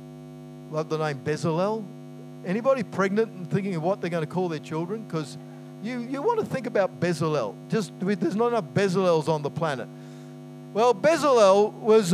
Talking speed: 175 wpm